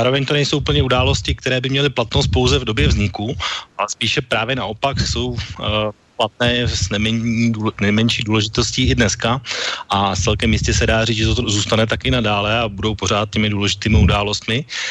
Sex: male